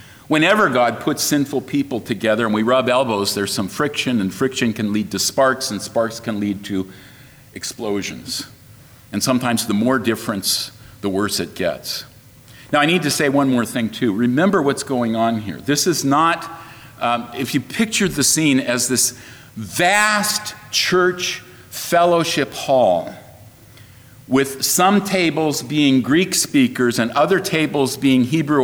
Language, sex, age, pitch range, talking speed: English, male, 50-69, 120-150 Hz, 155 wpm